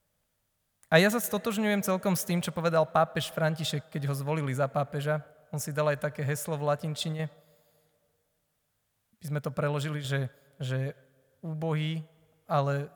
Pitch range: 135-155 Hz